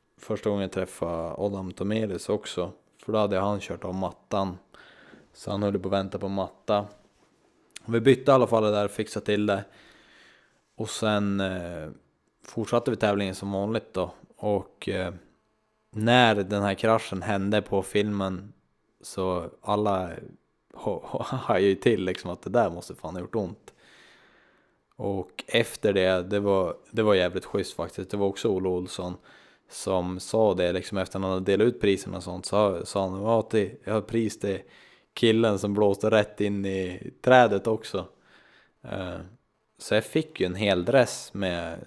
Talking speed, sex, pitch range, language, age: 170 wpm, male, 95-105 Hz, Swedish, 20-39